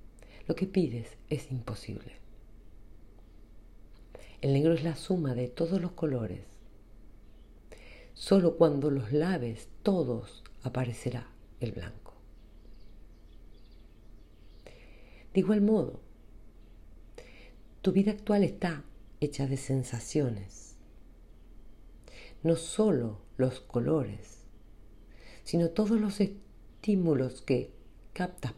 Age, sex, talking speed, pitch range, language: 50-69, female, 90 wpm, 105-160 Hz, Spanish